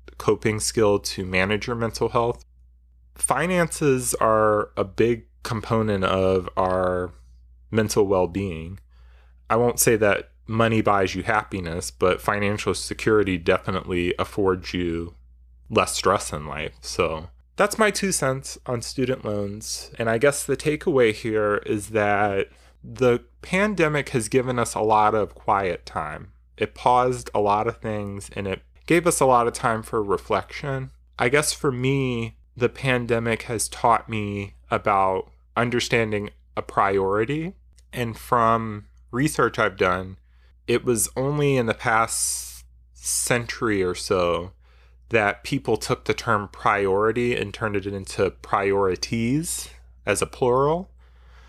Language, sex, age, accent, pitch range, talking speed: English, male, 30-49, American, 90-120 Hz, 135 wpm